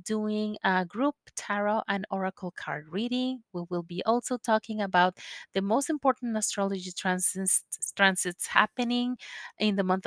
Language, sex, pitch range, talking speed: English, female, 185-245 Hz, 145 wpm